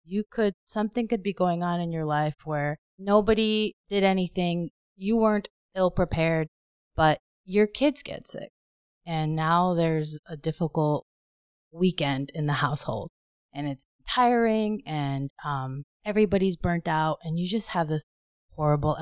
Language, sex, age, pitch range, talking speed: English, female, 20-39, 145-180 Hz, 145 wpm